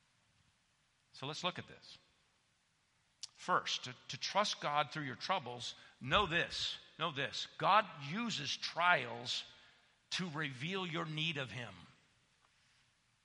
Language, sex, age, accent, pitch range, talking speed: English, male, 50-69, American, 145-210 Hz, 120 wpm